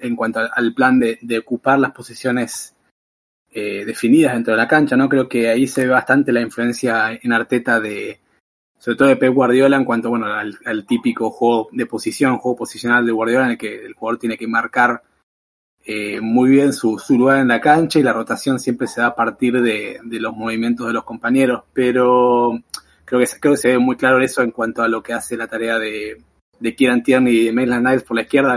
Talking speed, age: 225 wpm, 20-39